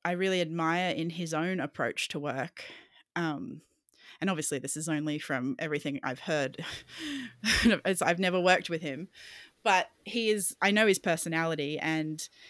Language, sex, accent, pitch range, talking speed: English, female, Australian, 160-190 Hz, 160 wpm